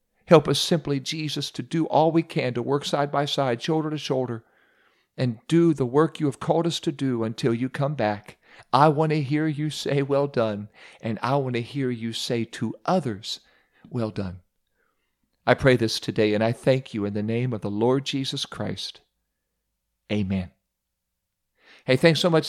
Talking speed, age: 190 wpm, 50-69